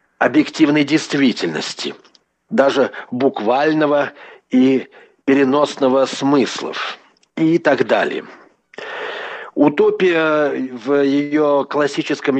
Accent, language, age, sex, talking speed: native, Russian, 50-69, male, 70 wpm